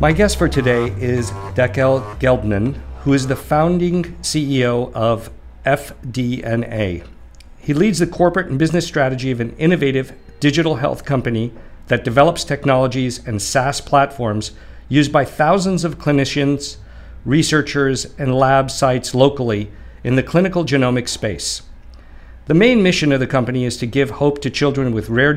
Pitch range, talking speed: 115-150 Hz, 145 wpm